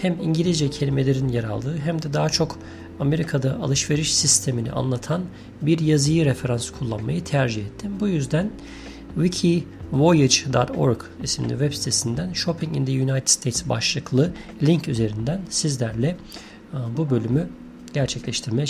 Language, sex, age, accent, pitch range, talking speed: Turkish, male, 40-59, native, 120-155 Hz, 120 wpm